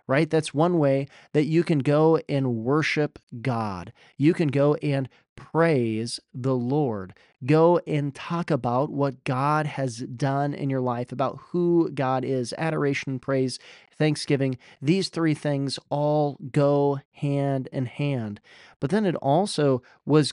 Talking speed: 145 wpm